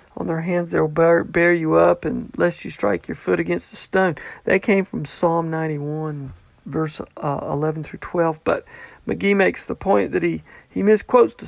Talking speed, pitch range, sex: 195 wpm, 160-200 Hz, male